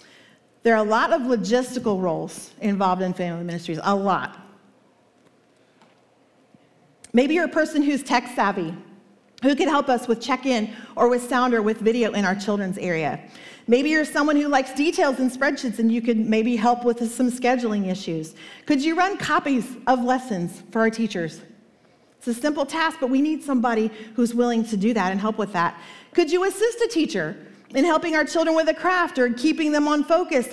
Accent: American